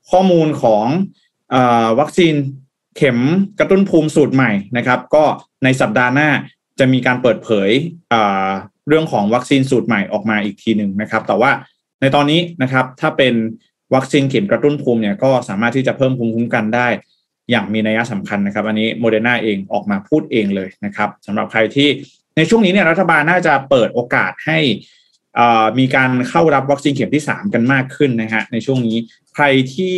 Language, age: Thai, 20-39